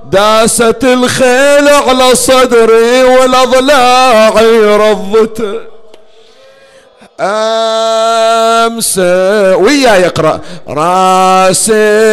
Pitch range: 190-255 Hz